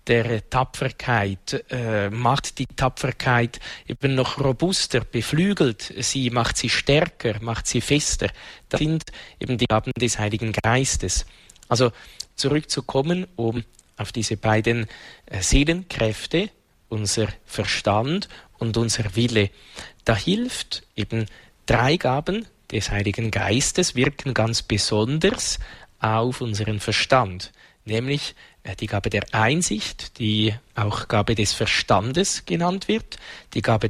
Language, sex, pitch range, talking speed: German, male, 110-145 Hz, 115 wpm